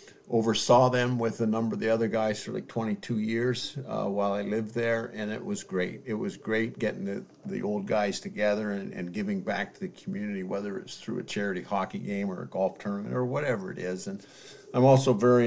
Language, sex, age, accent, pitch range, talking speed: English, male, 50-69, American, 105-130 Hz, 220 wpm